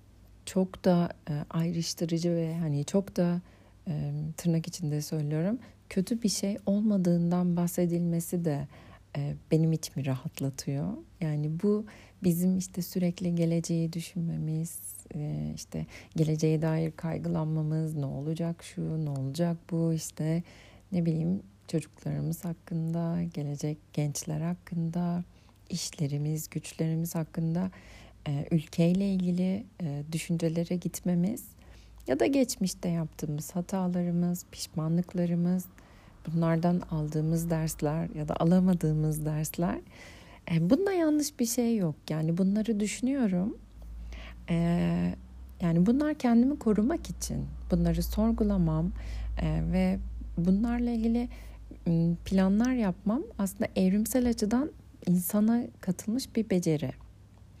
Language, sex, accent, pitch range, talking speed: Turkish, female, native, 155-185 Hz, 95 wpm